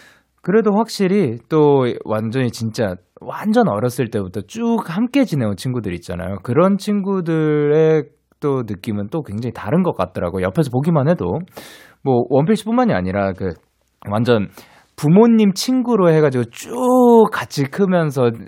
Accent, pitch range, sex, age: native, 105-175 Hz, male, 20-39